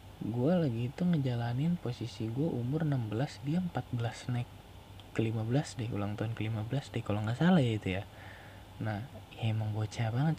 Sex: male